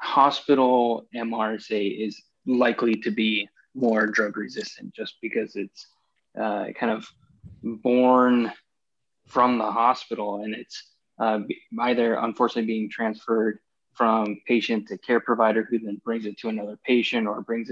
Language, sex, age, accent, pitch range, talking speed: English, male, 20-39, American, 110-120 Hz, 135 wpm